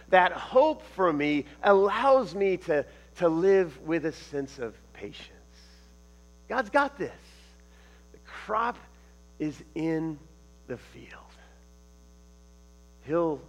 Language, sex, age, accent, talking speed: English, male, 40-59, American, 105 wpm